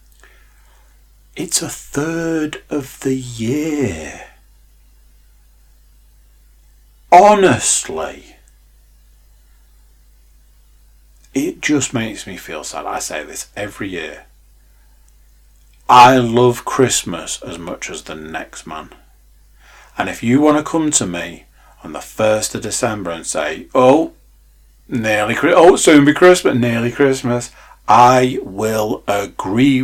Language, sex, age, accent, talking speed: English, male, 40-59, British, 105 wpm